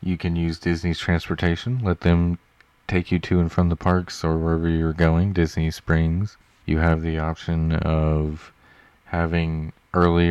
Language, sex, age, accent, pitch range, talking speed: English, male, 30-49, American, 80-95 Hz, 155 wpm